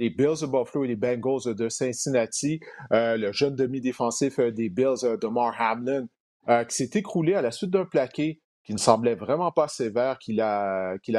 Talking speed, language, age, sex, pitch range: 190 wpm, French, 40-59, male, 110-135 Hz